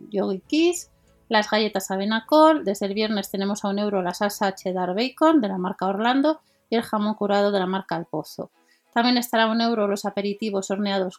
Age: 30-49